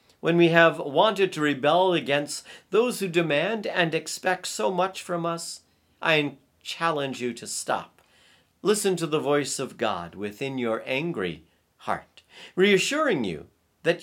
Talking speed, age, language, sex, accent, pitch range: 145 wpm, 50-69, English, male, American, 115-175 Hz